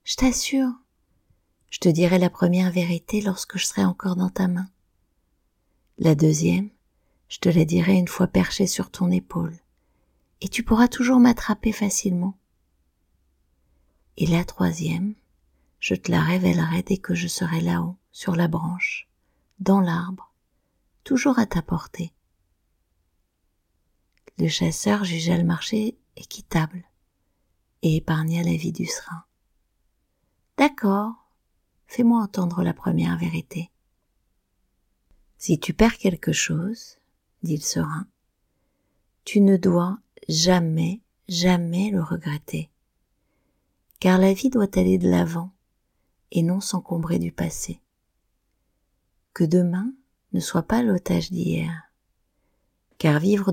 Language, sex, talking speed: French, female, 120 wpm